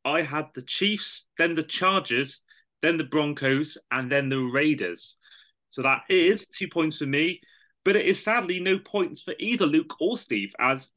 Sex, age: male, 30-49